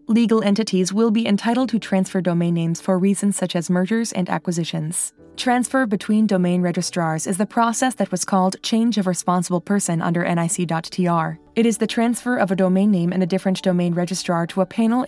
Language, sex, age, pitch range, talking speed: English, female, 20-39, 175-210 Hz, 190 wpm